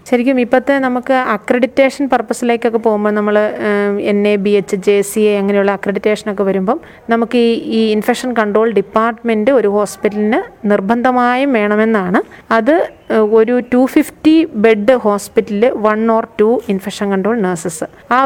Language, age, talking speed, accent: Malayalam, 30-49, 130 wpm, native